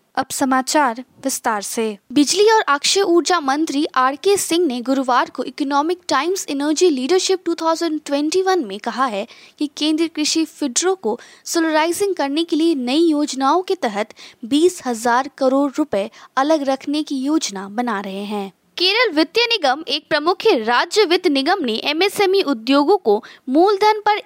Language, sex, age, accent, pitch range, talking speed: English, female, 20-39, Indian, 265-365 Hz, 150 wpm